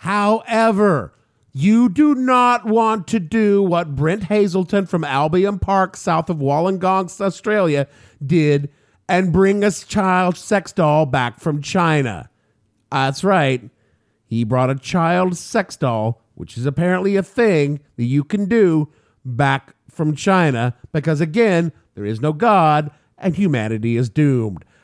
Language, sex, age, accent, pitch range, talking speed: English, male, 50-69, American, 140-210 Hz, 140 wpm